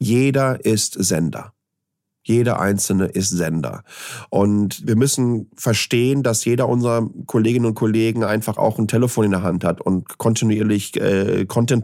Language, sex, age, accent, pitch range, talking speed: German, male, 40-59, German, 110-135 Hz, 145 wpm